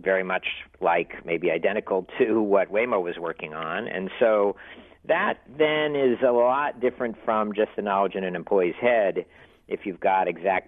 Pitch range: 95-125 Hz